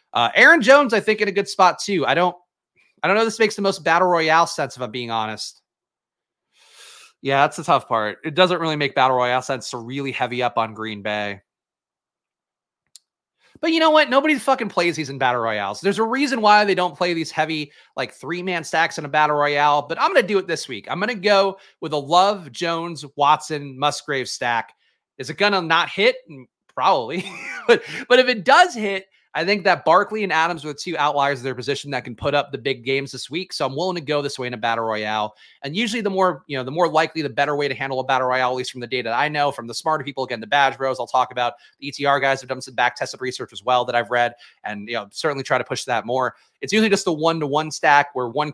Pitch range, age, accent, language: 130-185 Hz, 30-49, American, English